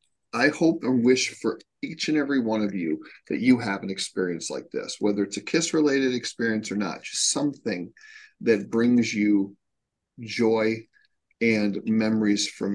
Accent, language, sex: American, English, male